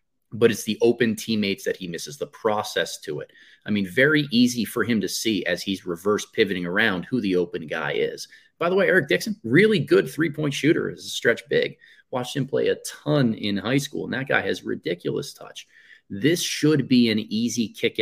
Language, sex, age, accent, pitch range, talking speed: English, male, 30-49, American, 95-125 Hz, 210 wpm